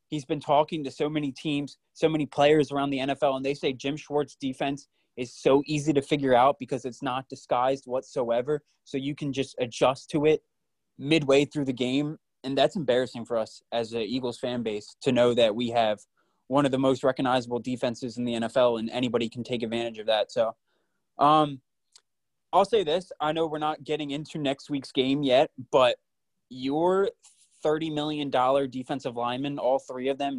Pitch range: 125-150 Hz